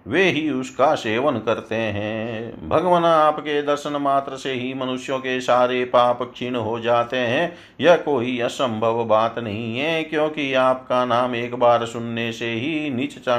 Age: 50-69